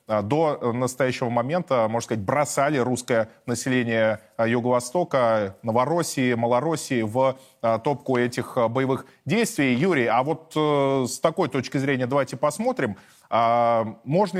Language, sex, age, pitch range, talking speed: Russian, male, 20-39, 115-155 Hz, 110 wpm